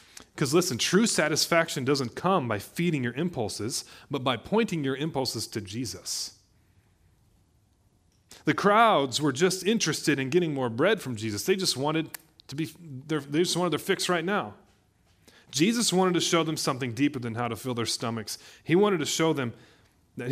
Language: English